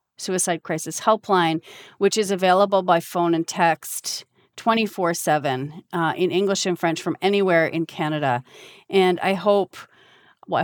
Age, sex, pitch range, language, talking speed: 40-59, female, 160-200 Hz, English, 140 wpm